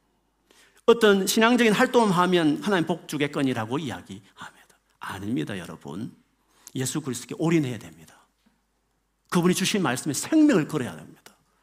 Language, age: Korean, 40-59